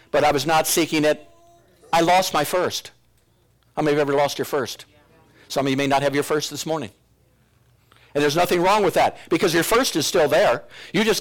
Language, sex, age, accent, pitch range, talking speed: English, male, 50-69, American, 145-205 Hz, 230 wpm